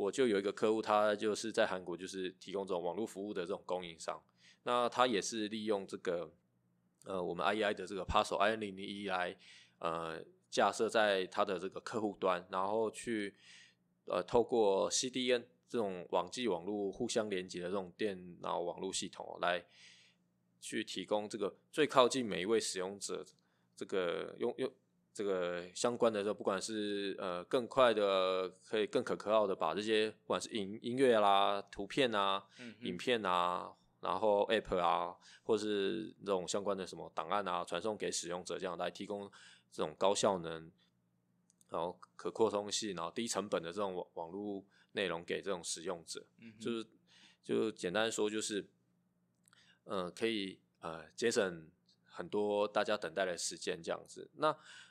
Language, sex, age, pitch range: English, male, 20-39, 90-110 Hz